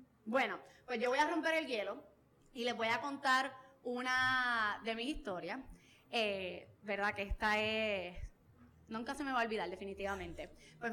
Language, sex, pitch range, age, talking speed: Spanish, female, 205-260 Hz, 20-39, 165 wpm